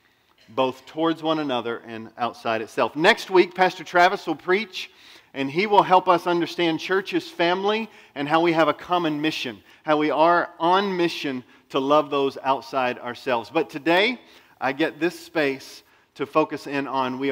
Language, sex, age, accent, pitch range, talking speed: English, male, 40-59, American, 135-180 Hz, 170 wpm